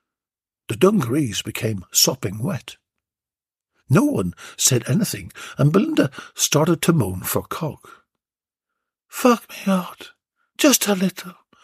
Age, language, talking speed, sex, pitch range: 60-79, English, 115 wpm, male, 145-230 Hz